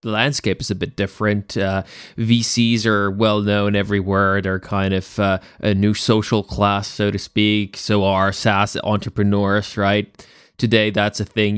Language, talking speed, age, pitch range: English, 165 wpm, 20-39, 100-135 Hz